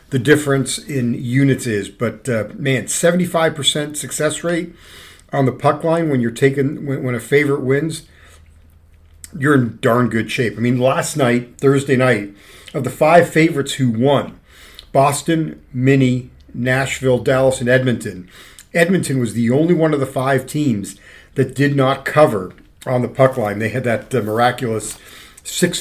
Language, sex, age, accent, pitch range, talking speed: English, male, 50-69, American, 110-140 Hz, 160 wpm